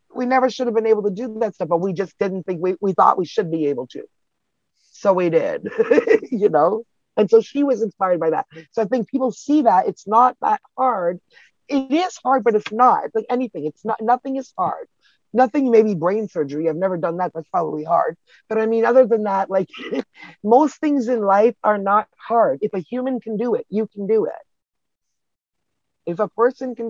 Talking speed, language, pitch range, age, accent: 220 wpm, English, 205-255 Hz, 30-49, American